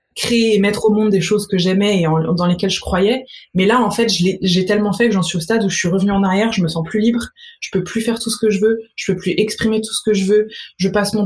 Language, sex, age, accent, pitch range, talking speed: French, female, 20-39, French, 180-215 Hz, 325 wpm